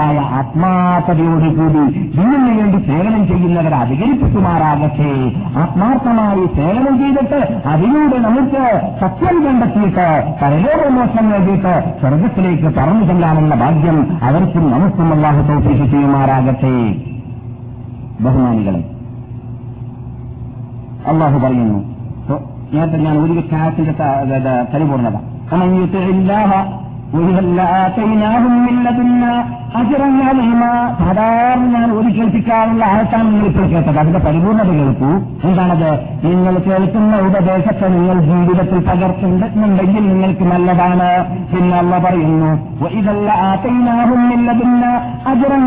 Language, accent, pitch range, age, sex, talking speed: Malayalam, native, 155-215 Hz, 50-69, male, 55 wpm